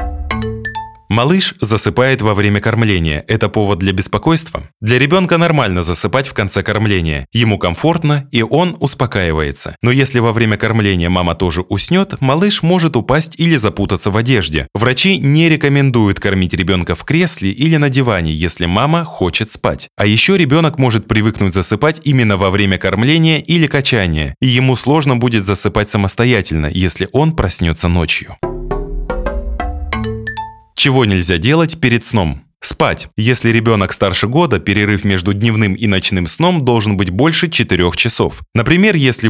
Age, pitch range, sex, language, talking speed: 20-39, 95-135 Hz, male, Russian, 145 wpm